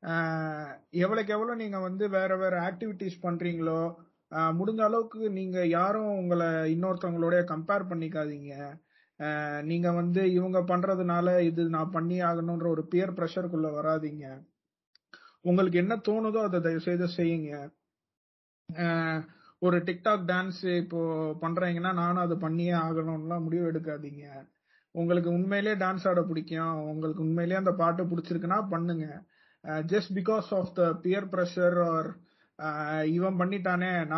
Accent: native